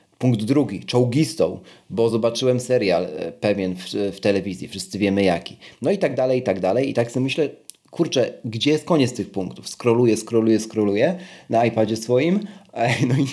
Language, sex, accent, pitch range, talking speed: Polish, male, native, 115-155 Hz, 170 wpm